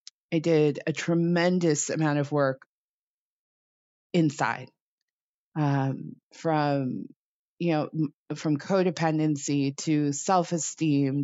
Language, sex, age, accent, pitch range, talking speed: English, female, 30-49, American, 145-165 Hz, 85 wpm